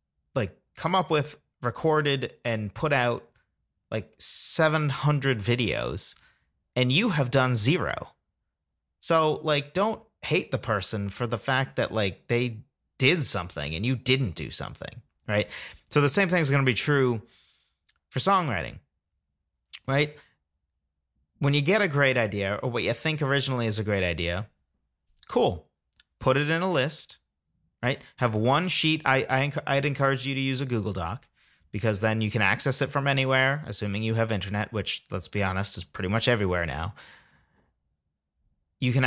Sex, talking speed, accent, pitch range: male, 165 wpm, American, 100-135 Hz